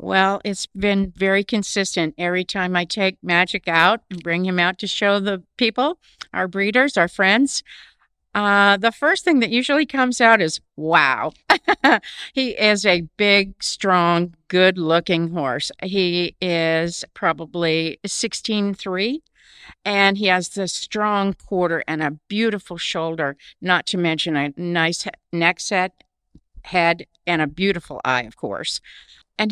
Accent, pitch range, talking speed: American, 165-200 Hz, 140 wpm